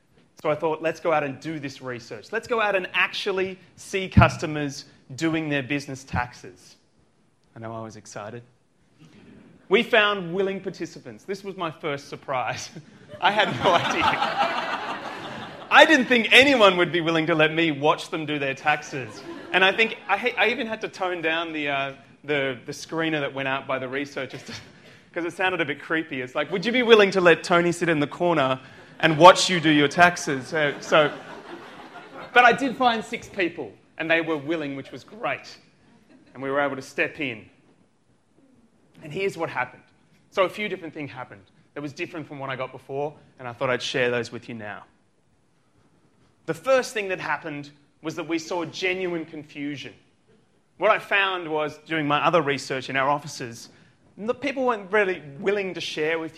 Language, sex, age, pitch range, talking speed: English, male, 30-49, 135-185 Hz, 190 wpm